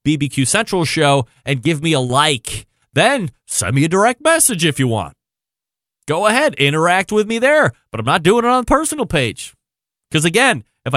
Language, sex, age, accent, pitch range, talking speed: English, male, 30-49, American, 130-180 Hz, 190 wpm